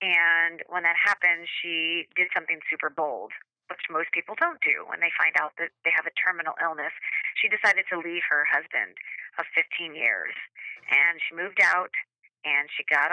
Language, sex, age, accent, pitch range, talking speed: English, female, 30-49, American, 175-285 Hz, 185 wpm